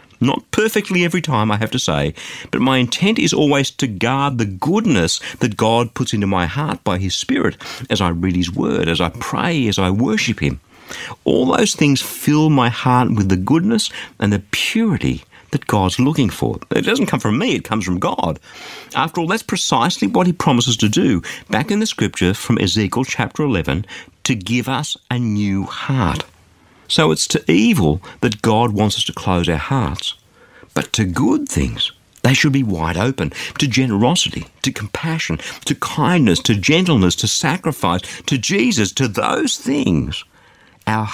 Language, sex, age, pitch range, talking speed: English, male, 50-69, 100-145 Hz, 180 wpm